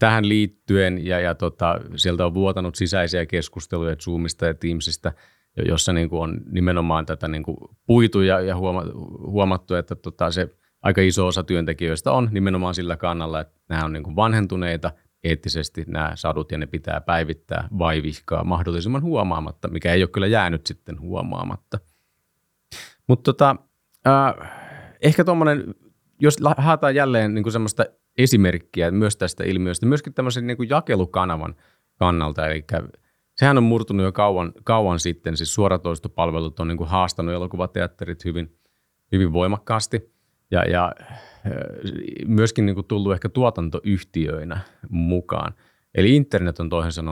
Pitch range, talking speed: 85-105 Hz, 120 wpm